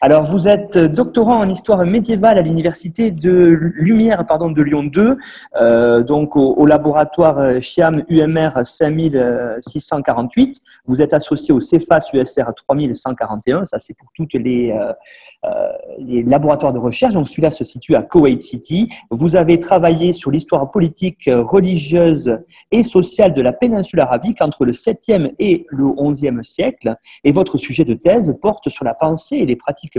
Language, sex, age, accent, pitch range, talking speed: French, male, 40-59, French, 135-195 Hz, 160 wpm